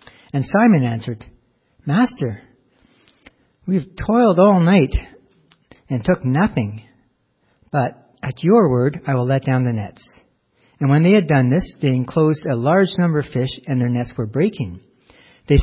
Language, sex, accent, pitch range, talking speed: English, male, American, 125-160 Hz, 155 wpm